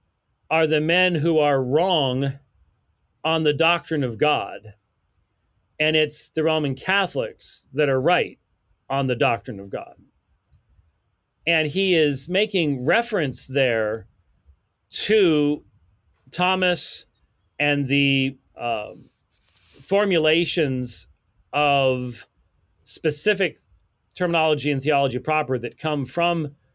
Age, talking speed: 40-59, 100 wpm